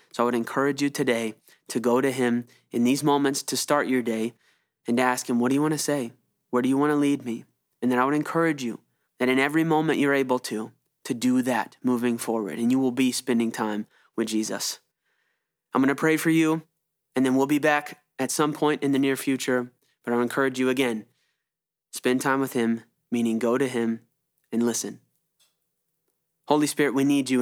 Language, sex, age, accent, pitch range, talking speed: English, male, 20-39, American, 120-145 Hz, 215 wpm